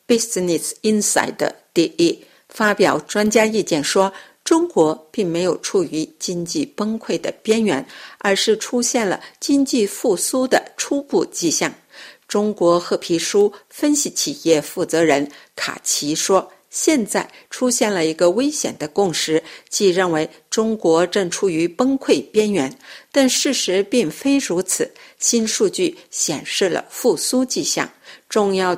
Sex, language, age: female, Chinese, 50-69